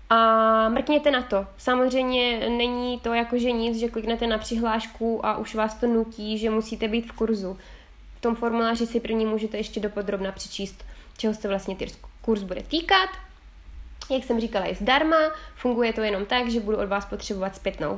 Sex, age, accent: female, 20-39, native